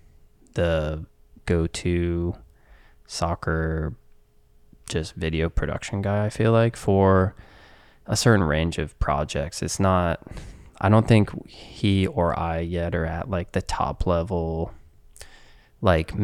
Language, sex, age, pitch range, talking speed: English, male, 20-39, 85-100 Hz, 120 wpm